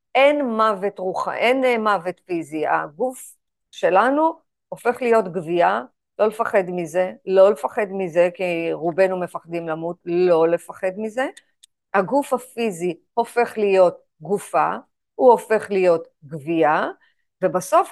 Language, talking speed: Hebrew, 110 wpm